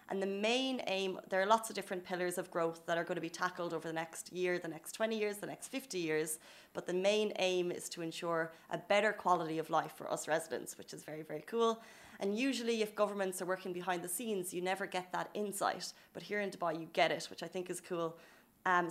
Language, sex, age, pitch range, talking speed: Arabic, female, 20-39, 170-210 Hz, 245 wpm